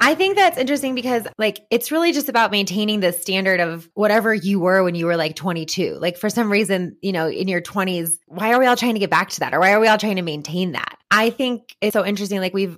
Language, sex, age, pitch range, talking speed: English, female, 20-39, 180-230 Hz, 270 wpm